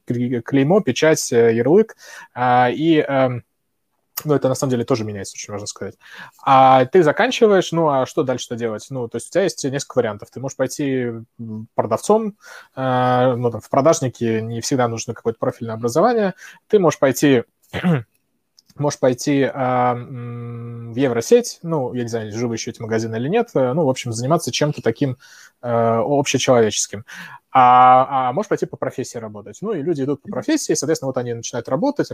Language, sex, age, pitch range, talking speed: Russian, male, 20-39, 120-155 Hz, 165 wpm